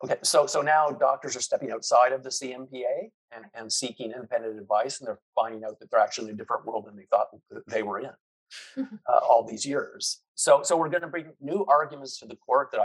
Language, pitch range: English, 115-150 Hz